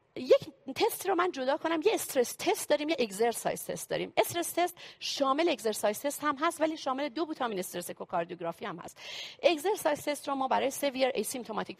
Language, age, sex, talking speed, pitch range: Persian, 40-59, female, 185 wpm, 225-320 Hz